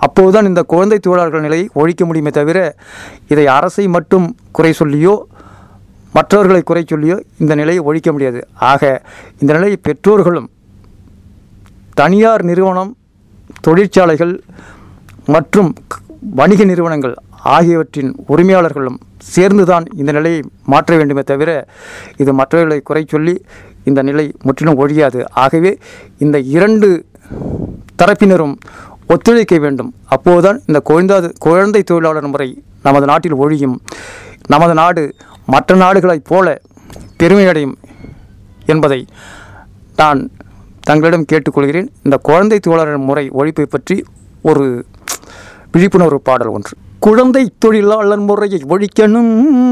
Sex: male